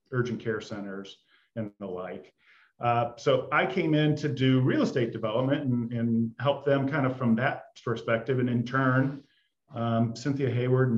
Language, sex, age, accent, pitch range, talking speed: English, male, 40-59, American, 115-135 Hz, 175 wpm